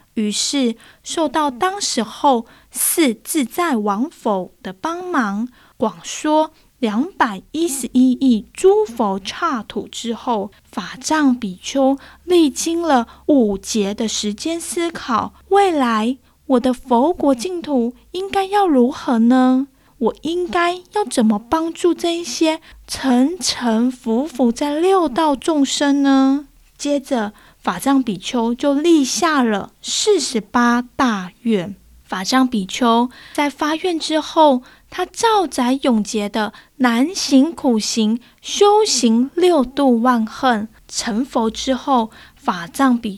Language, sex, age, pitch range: Chinese, female, 20-39, 235-325 Hz